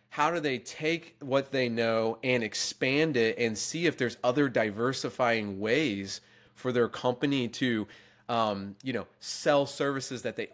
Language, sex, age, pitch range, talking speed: English, male, 30-49, 110-135 Hz, 160 wpm